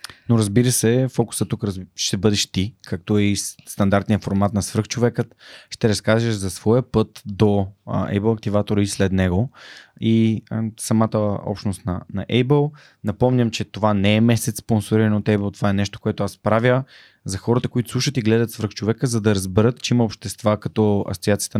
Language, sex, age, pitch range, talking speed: Bulgarian, male, 20-39, 100-120 Hz, 170 wpm